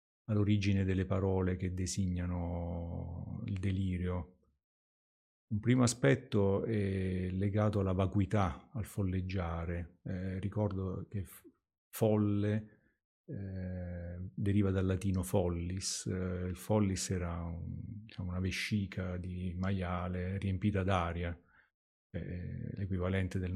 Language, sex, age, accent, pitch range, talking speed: Italian, male, 40-59, native, 90-105 Hz, 100 wpm